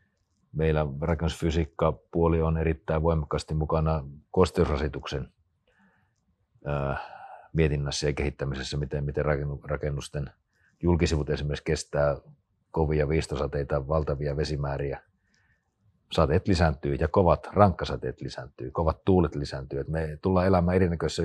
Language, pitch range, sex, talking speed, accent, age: Finnish, 75-95 Hz, male, 95 wpm, native, 40-59